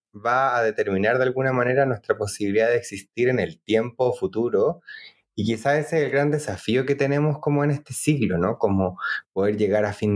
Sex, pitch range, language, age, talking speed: male, 105-130 Hz, Spanish, 20-39, 195 wpm